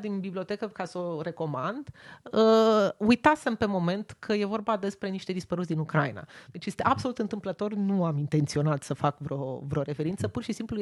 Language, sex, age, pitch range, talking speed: Romanian, female, 30-49, 160-210 Hz, 175 wpm